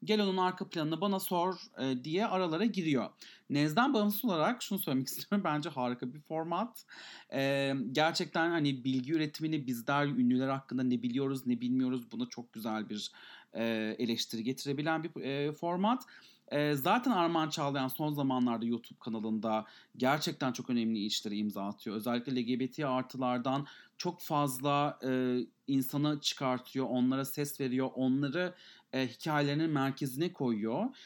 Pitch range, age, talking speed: 130-175 Hz, 40-59, 140 wpm